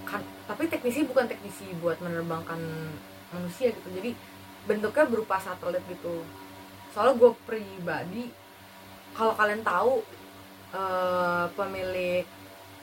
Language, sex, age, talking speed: Indonesian, female, 20-39, 105 wpm